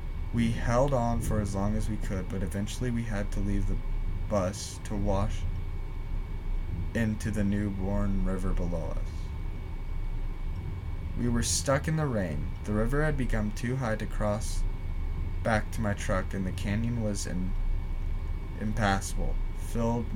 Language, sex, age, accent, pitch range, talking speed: English, male, 20-39, American, 90-110 Hz, 145 wpm